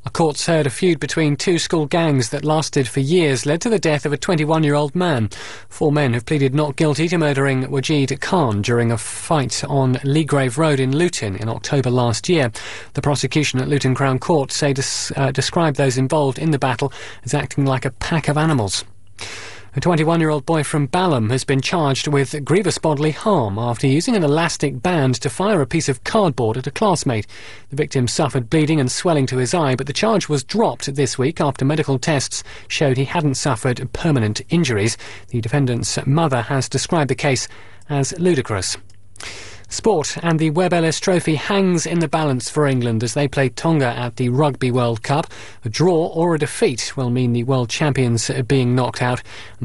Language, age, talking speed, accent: English, 30-49, 190 wpm, British